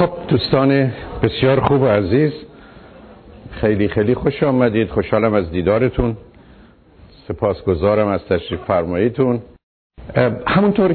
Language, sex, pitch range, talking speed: Persian, male, 90-115 Hz, 100 wpm